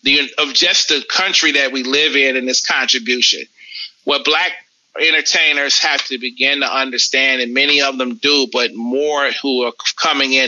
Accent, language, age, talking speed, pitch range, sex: American, English, 30-49, 180 wpm, 125-150 Hz, male